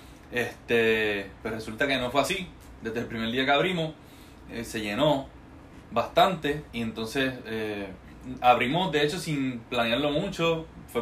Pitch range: 120-150 Hz